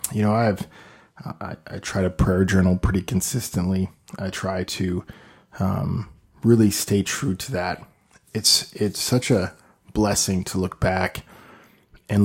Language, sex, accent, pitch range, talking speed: English, male, American, 95-110 Hz, 140 wpm